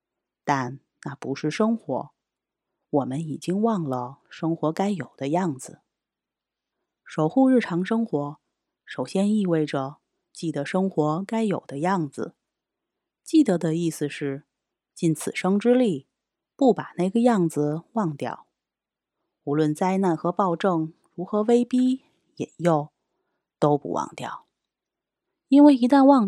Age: 30-49